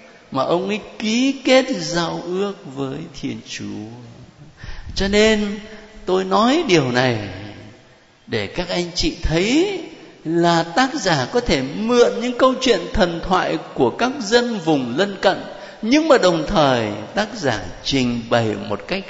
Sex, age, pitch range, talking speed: male, 60-79, 150-240 Hz, 150 wpm